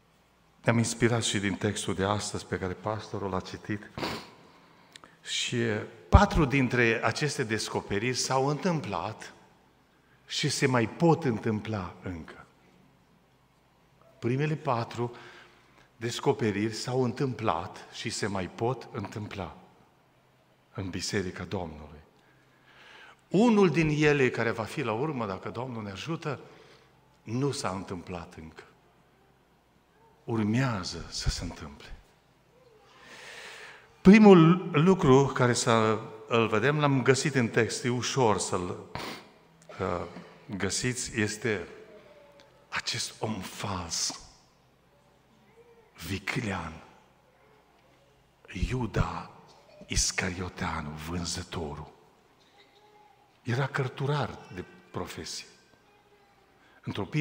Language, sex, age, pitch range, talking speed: Romanian, male, 50-69, 100-140 Hz, 90 wpm